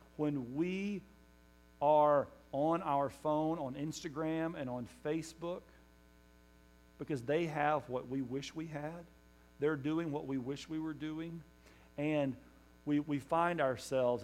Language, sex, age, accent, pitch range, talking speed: English, male, 40-59, American, 105-150 Hz, 135 wpm